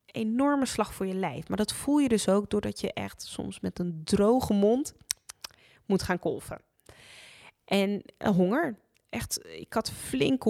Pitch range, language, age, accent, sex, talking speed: 180-225 Hz, Dutch, 20-39, Dutch, female, 165 wpm